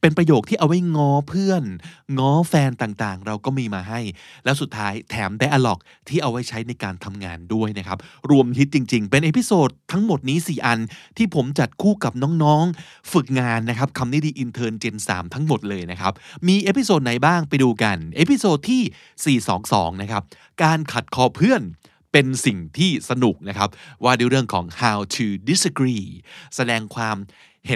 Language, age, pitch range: Thai, 20-39, 105-155 Hz